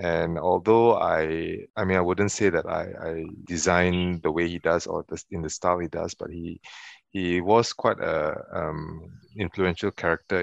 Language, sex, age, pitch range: English, male, 30-49, 85-105 Hz